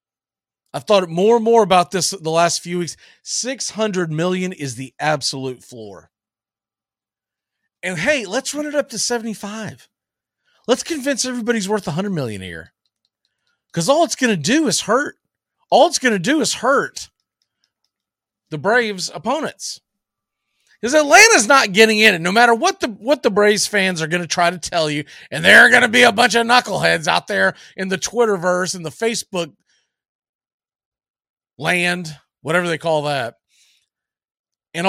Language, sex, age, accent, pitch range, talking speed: English, male, 40-59, American, 155-235 Hz, 165 wpm